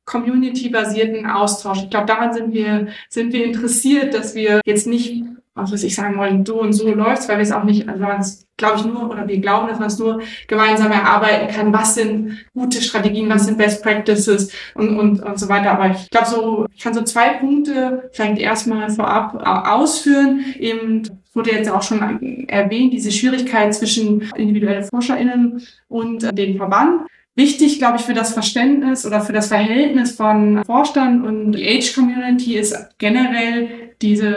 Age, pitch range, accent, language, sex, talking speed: 20-39, 210-240 Hz, German, German, female, 175 wpm